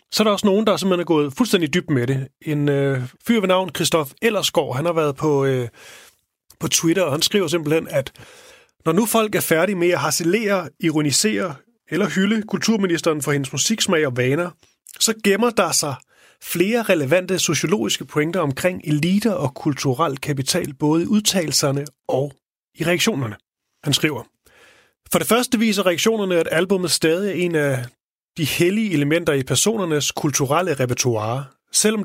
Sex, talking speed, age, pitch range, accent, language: male, 165 wpm, 30-49, 145-185 Hz, native, Danish